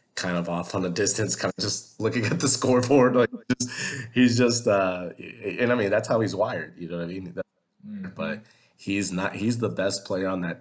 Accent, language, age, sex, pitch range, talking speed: American, English, 30-49, male, 85-110 Hz, 240 wpm